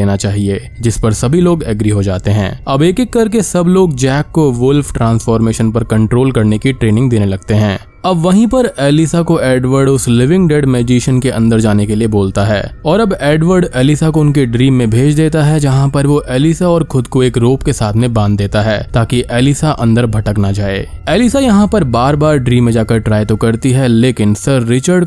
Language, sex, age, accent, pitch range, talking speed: Hindi, male, 20-39, native, 110-150 Hz, 220 wpm